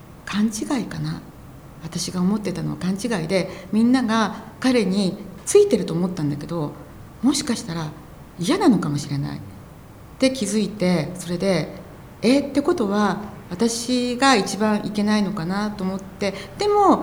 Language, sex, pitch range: Japanese, female, 160-230 Hz